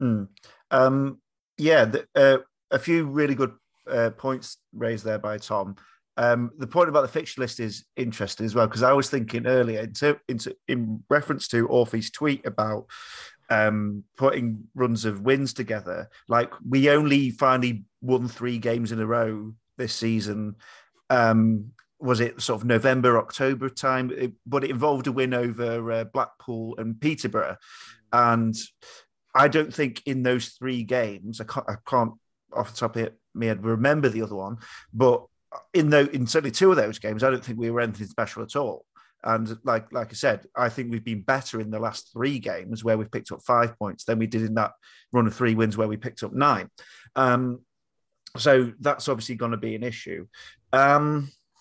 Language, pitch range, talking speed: English, 110-135 Hz, 190 wpm